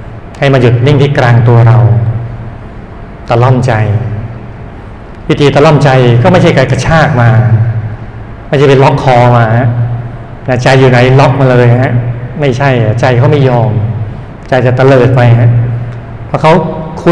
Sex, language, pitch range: male, Thai, 120-135 Hz